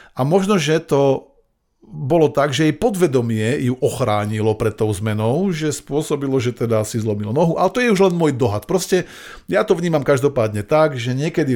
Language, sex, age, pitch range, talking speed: Slovak, male, 40-59, 110-145 Hz, 185 wpm